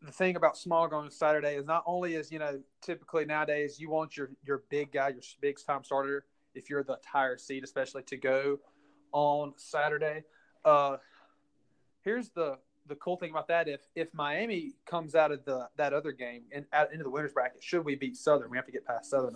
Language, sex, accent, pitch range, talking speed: English, male, American, 135-160 Hz, 210 wpm